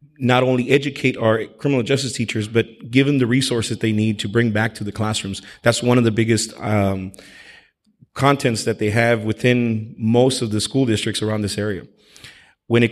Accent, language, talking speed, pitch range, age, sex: American, English, 190 wpm, 105-120 Hz, 30-49, male